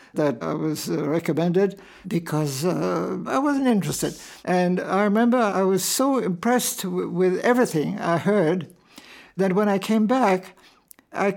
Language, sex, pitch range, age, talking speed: English, male, 170-205 Hz, 60-79, 145 wpm